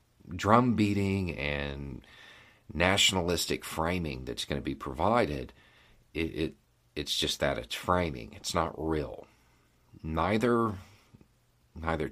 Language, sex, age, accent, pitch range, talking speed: English, male, 40-59, American, 75-95 Hz, 110 wpm